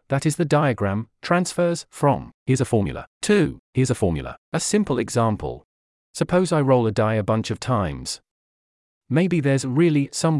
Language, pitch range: English, 105-140 Hz